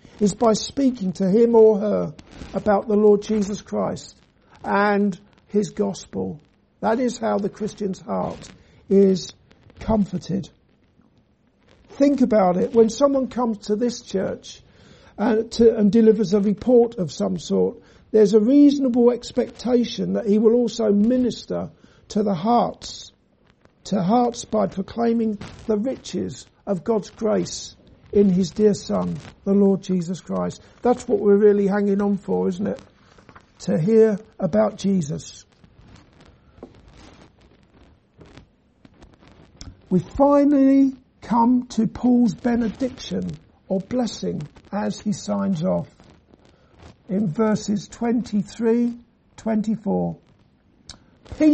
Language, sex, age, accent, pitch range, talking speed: English, male, 60-79, British, 195-235 Hz, 115 wpm